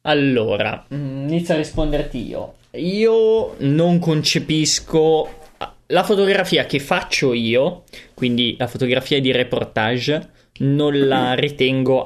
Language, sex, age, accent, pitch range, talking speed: Italian, male, 20-39, native, 120-145 Hz, 105 wpm